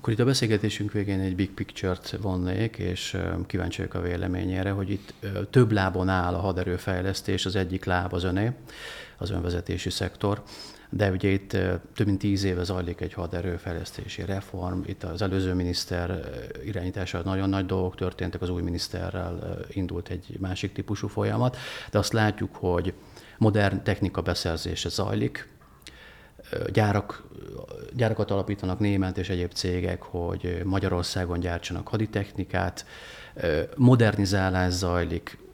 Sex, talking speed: male, 130 wpm